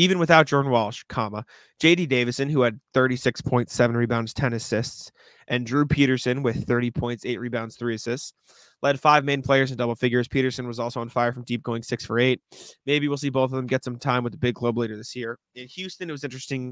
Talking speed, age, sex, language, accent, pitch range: 225 wpm, 20-39, male, English, American, 120-130 Hz